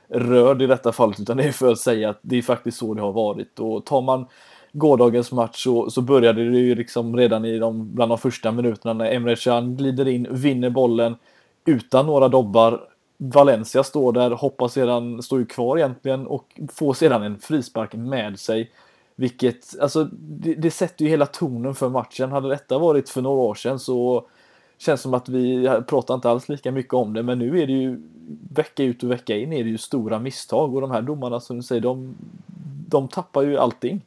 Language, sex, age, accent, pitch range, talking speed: Swedish, male, 20-39, native, 120-140 Hz, 210 wpm